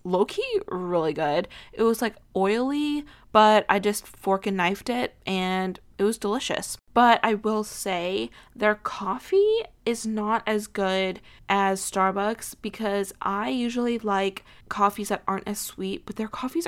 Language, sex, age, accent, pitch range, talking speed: English, female, 20-39, American, 190-220 Hz, 150 wpm